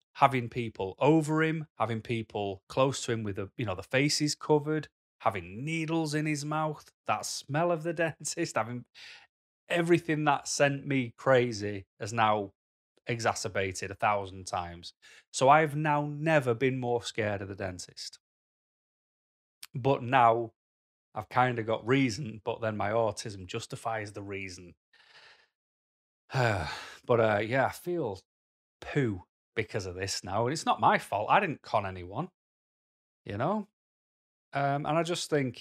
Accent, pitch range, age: British, 110-145 Hz, 30-49